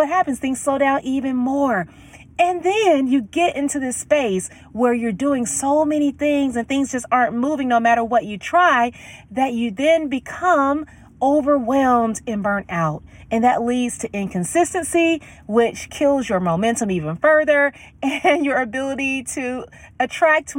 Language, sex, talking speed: English, female, 155 wpm